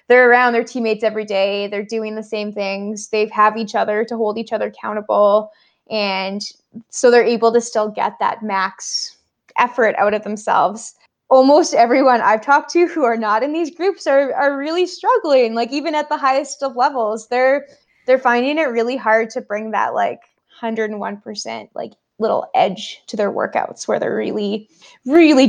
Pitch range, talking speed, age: 210-255 Hz, 180 wpm, 20-39